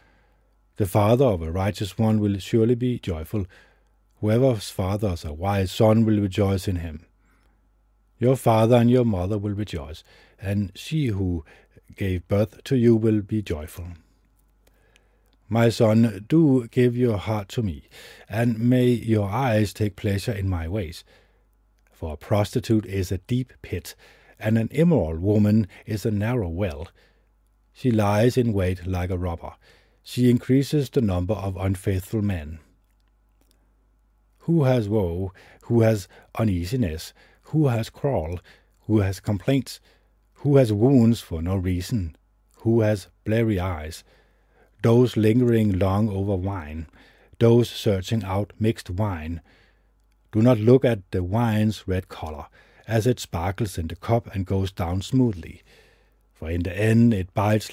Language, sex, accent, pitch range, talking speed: English, male, Danish, 95-115 Hz, 145 wpm